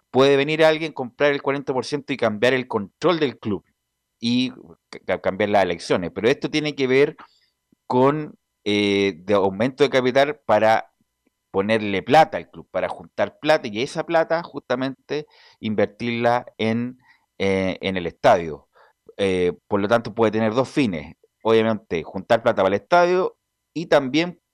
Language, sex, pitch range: Spanish, male, 110-150 Hz